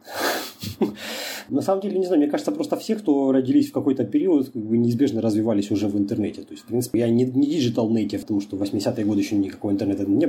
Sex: male